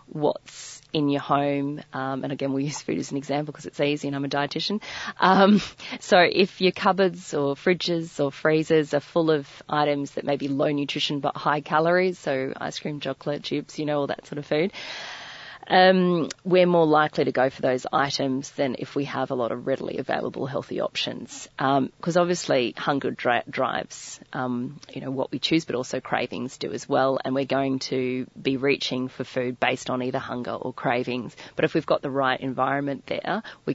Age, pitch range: 30-49, 135-160 Hz